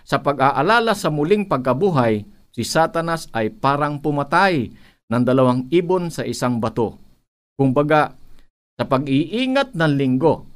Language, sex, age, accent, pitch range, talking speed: Filipino, male, 50-69, native, 115-165 Hz, 125 wpm